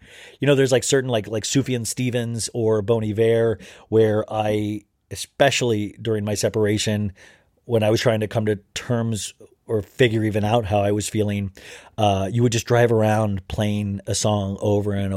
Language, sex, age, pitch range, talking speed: English, male, 30-49, 105-125 Hz, 180 wpm